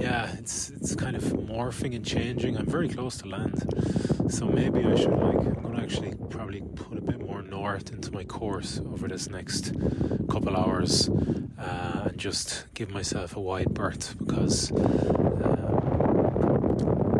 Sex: male